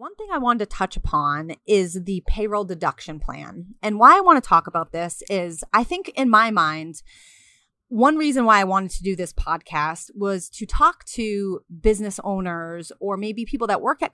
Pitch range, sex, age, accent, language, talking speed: 180-235 Hz, female, 30-49, American, English, 200 wpm